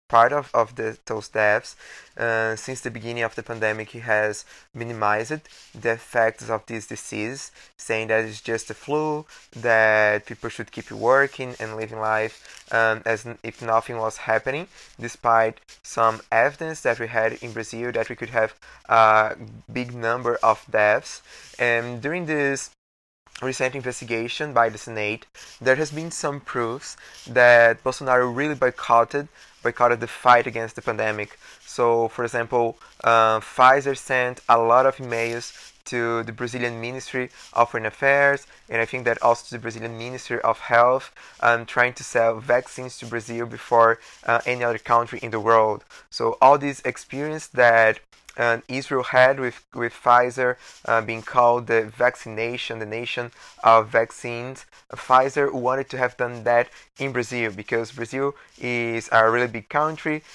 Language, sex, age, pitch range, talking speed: English, male, 20-39, 115-125 Hz, 160 wpm